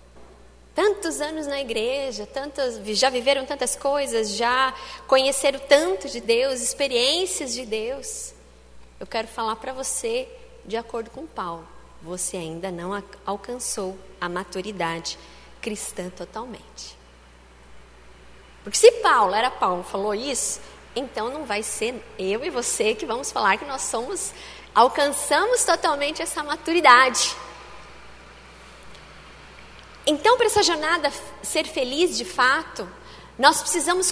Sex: female